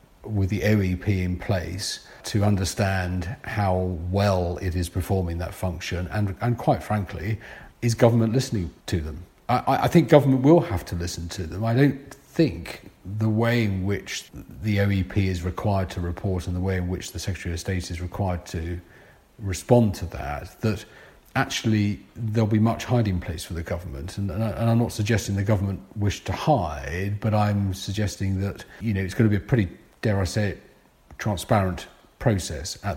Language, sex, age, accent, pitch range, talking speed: English, male, 40-59, British, 90-110 Hz, 185 wpm